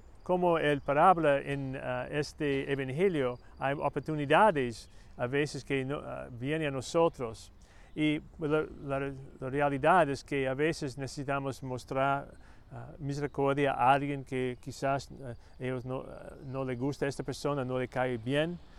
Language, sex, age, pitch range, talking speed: Spanish, male, 40-59, 125-150 Hz, 155 wpm